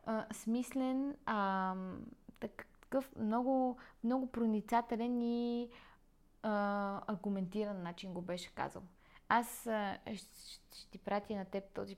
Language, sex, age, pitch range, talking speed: Bulgarian, female, 20-39, 190-230 Hz, 110 wpm